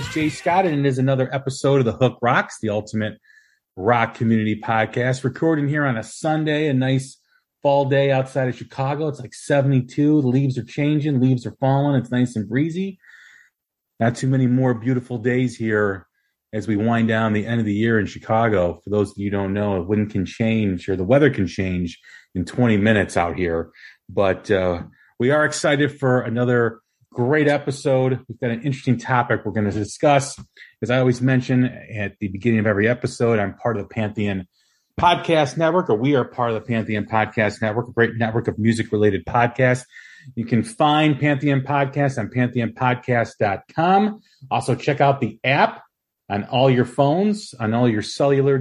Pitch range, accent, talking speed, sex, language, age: 110-140 Hz, American, 185 wpm, male, English, 30-49